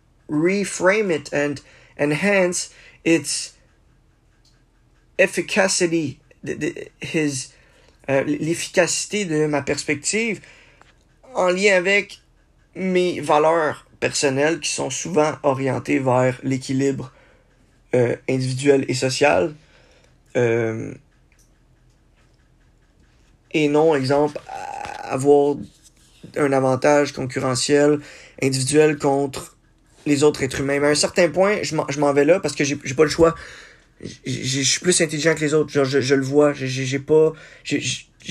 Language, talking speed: English, 115 wpm